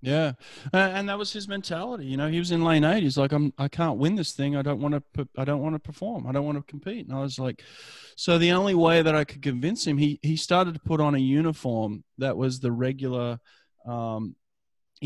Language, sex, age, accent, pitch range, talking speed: English, male, 30-49, Australian, 120-145 Hz, 245 wpm